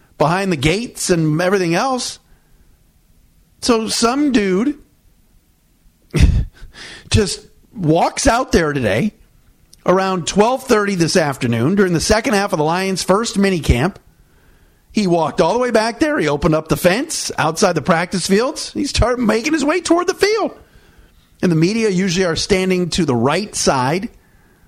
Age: 40-59